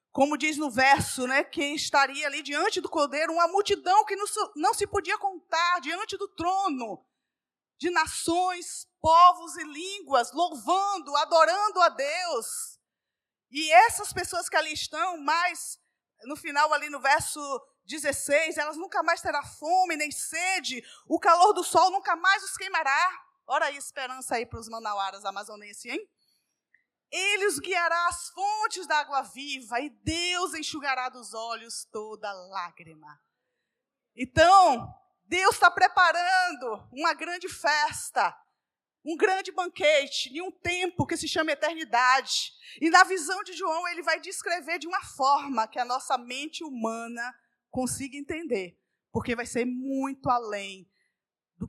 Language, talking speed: Portuguese, 145 wpm